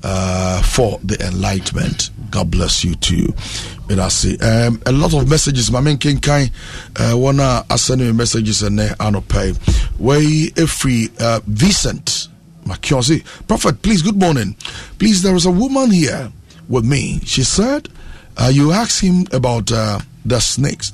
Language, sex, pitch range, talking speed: English, male, 100-140 Hz, 150 wpm